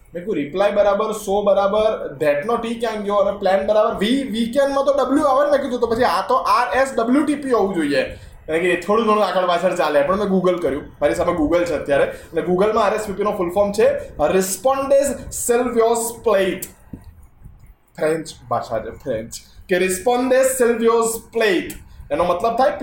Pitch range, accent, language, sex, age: 170-235 Hz, native, Gujarati, male, 20-39